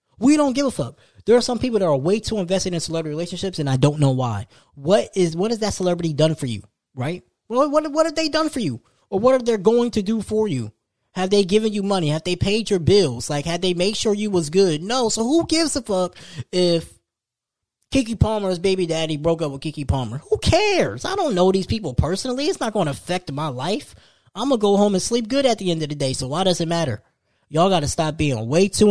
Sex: male